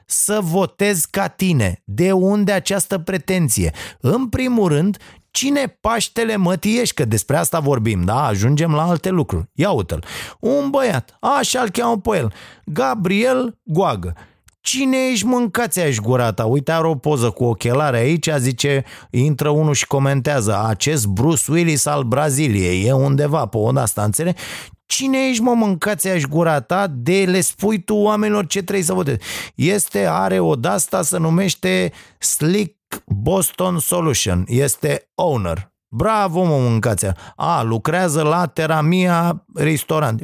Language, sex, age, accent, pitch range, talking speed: Romanian, male, 30-49, native, 135-200 Hz, 140 wpm